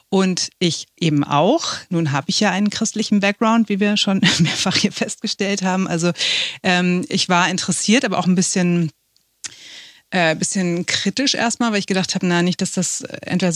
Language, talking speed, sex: German, 175 wpm, female